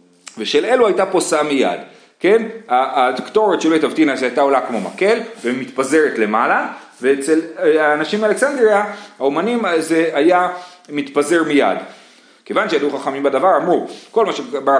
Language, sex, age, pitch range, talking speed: Hebrew, male, 30-49, 140-205 Hz, 135 wpm